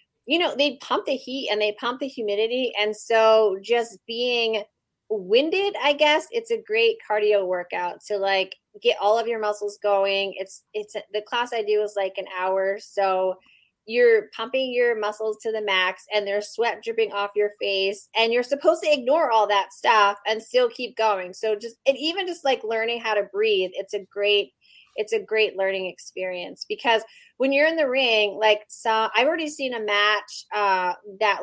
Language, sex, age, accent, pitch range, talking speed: English, female, 30-49, American, 195-255 Hz, 195 wpm